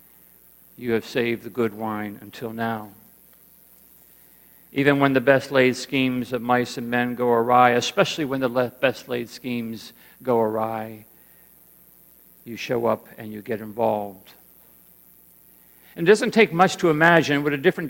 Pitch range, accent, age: 125-185 Hz, American, 60-79